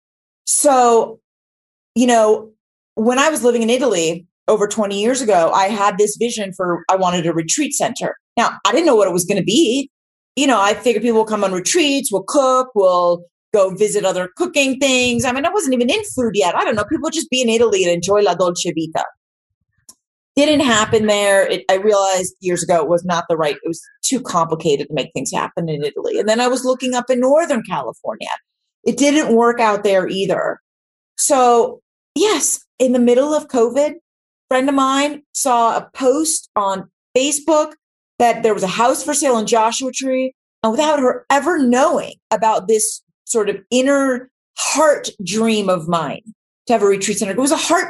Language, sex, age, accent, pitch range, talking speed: English, female, 30-49, American, 200-275 Hz, 200 wpm